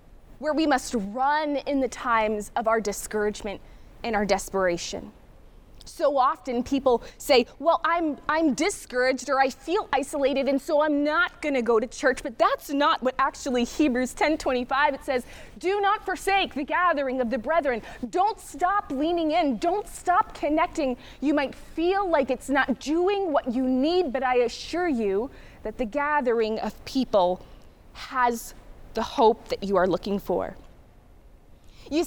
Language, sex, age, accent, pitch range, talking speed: English, female, 20-39, American, 255-340 Hz, 165 wpm